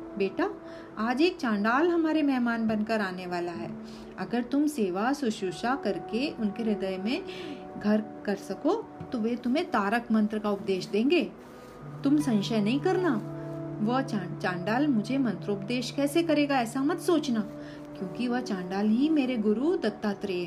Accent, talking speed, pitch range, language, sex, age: native, 150 wpm, 205-280 Hz, Hindi, female, 40-59